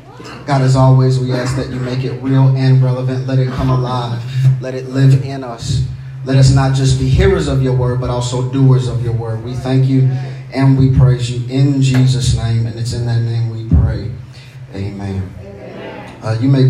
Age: 30-49